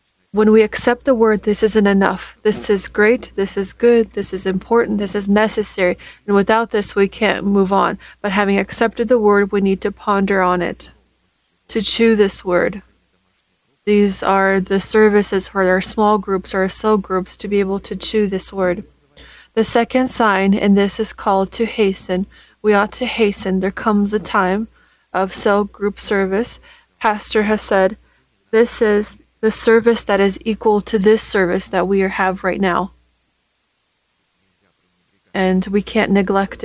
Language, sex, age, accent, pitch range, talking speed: English, female, 20-39, American, 190-215 Hz, 170 wpm